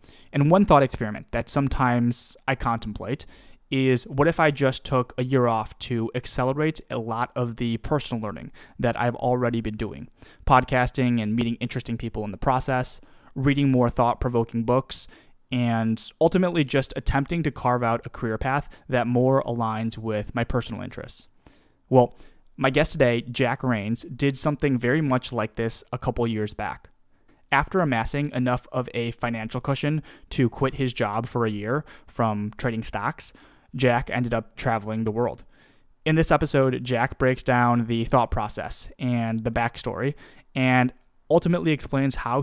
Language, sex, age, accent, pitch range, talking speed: English, male, 20-39, American, 115-135 Hz, 160 wpm